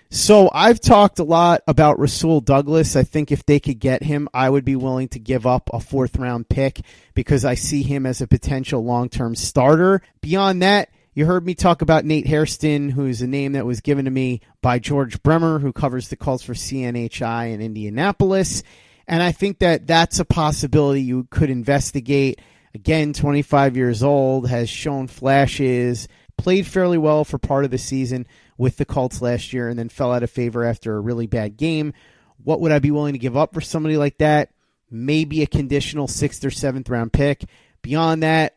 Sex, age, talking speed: male, 30-49, 195 wpm